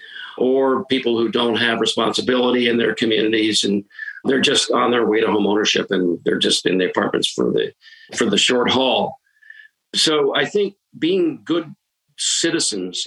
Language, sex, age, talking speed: English, male, 50-69, 165 wpm